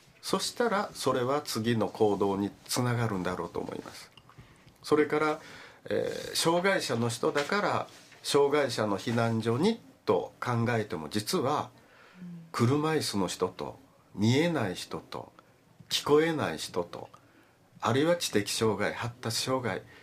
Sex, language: male, Japanese